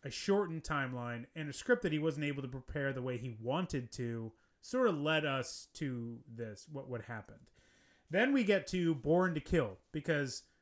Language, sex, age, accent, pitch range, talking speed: English, male, 30-49, American, 125-160 Hz, 190 wpm